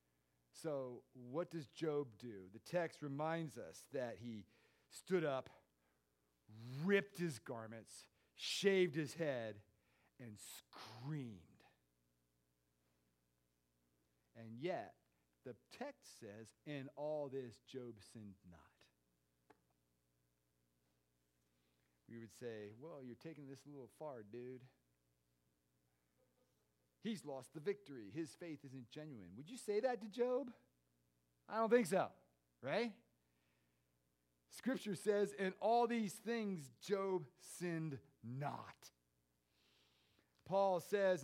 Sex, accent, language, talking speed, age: male, American, English, 105 wpm, 40-59